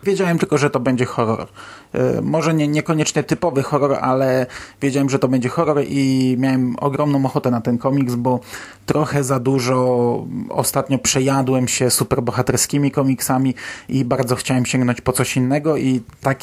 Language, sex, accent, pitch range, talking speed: Polish, male, native, 120-140 Hz, 155 wpm